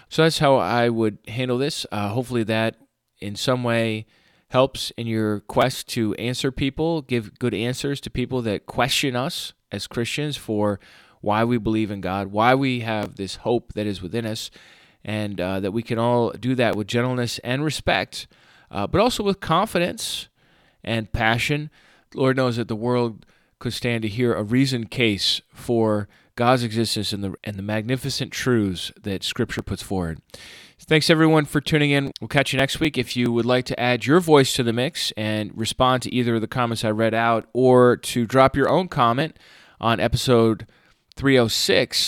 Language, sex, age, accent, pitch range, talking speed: English, male, 20-39, American, 110-130 Hz, 185 wpm